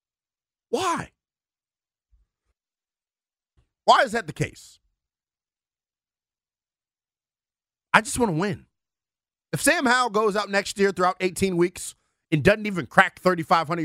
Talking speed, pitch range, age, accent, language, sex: 115 wpm, 140-200 Hz, 40-59, American, English, male